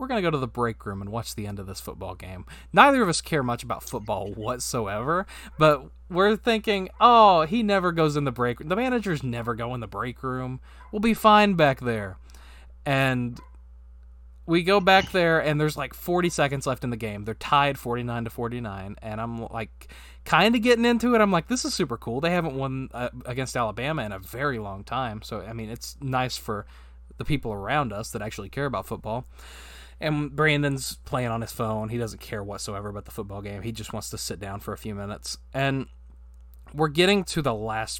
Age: 20-39